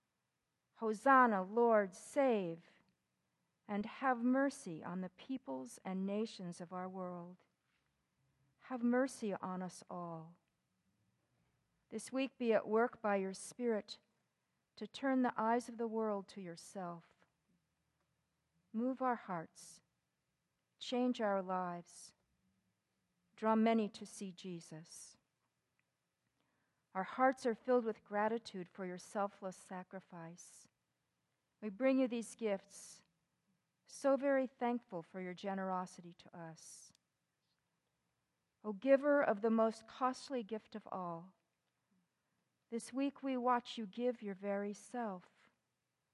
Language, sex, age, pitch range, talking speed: English, female, 50-69, 180-240 Hz, 115 wpm